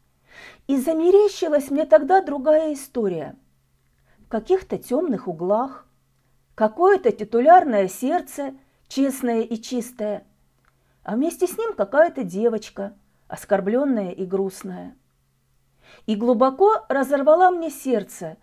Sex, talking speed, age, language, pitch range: female, 100 wpm, 40-59, Russian, 195-290 Hz